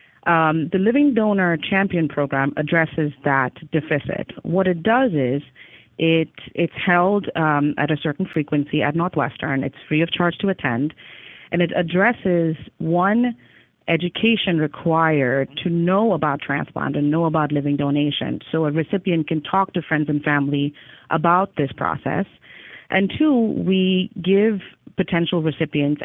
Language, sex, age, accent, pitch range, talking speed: English, female, 30-49, American, 150-195 Hz, 145 wpm